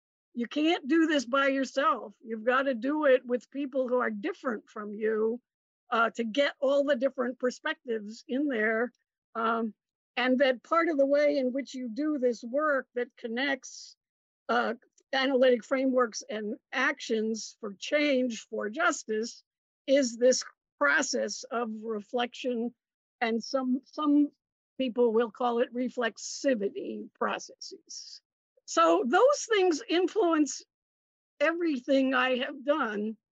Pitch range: 240-285 Hz